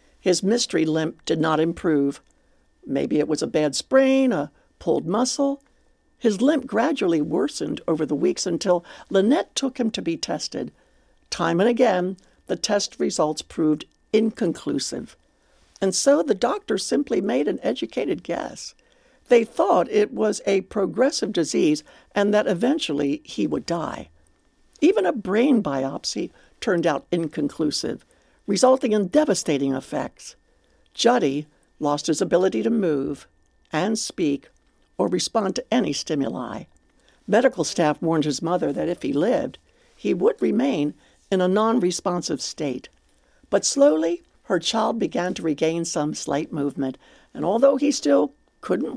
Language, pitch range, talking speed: English, 150-225 Hz, 140 wpm